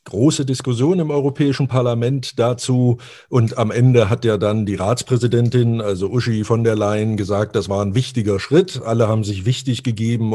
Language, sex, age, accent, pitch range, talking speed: German, male, 50-69, German, 105-125 Hz, 175 wpm